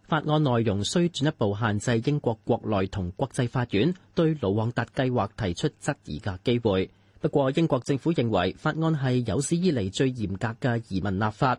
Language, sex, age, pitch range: Chinese, male, 30-49, 105-140 Hz